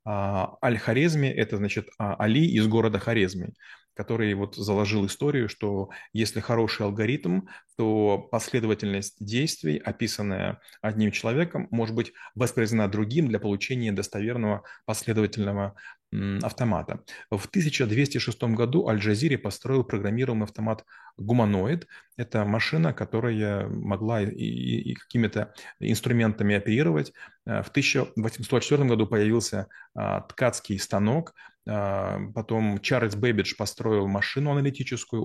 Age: 30-49